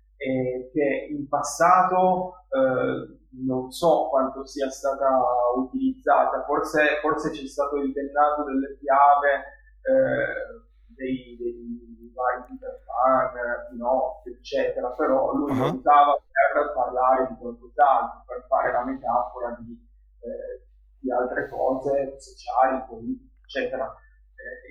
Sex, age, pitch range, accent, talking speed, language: female, 30-49, 130-175 Hz, native, 115 wpm, Italian